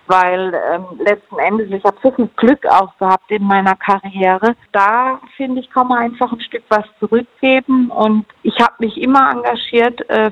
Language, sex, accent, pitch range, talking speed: German, female, German, 200-235 Hz, 180 wpm